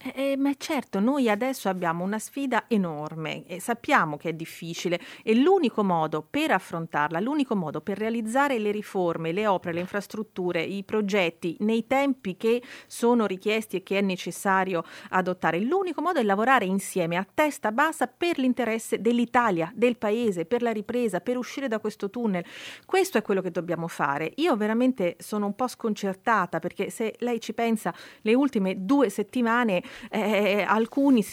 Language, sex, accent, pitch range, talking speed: Italian, female, native, 180-240 Hz, 165 wpm